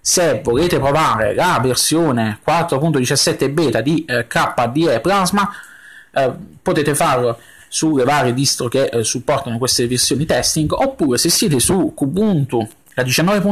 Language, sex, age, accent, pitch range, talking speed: Italian, male, 30-49, native, 125-170 Hz, 130 wpm